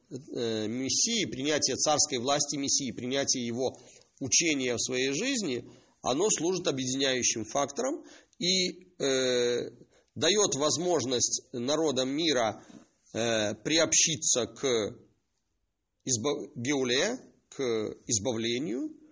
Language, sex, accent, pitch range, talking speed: Russian, male, native, 120-160 Hz, 90 wpm